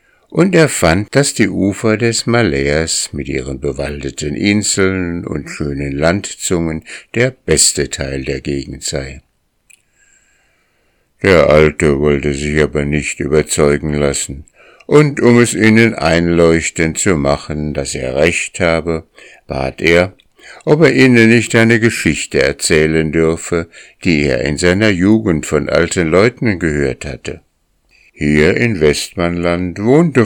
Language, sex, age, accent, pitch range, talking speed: German, male, 60-79, German, 70-100 Hz, 125 wpm